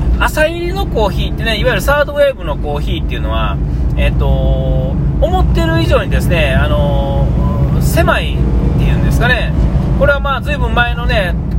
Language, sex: Japanese, male